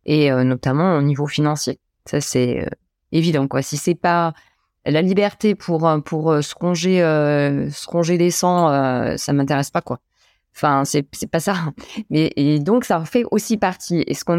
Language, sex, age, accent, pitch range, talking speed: French, female, 20-39, French, 150-185 Hz, 200 wpm